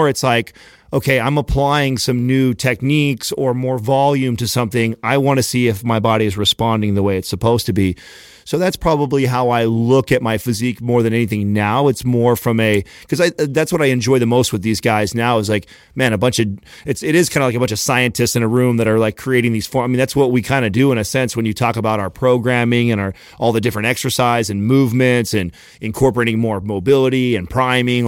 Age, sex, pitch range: 30-49, male, 115-130 Hz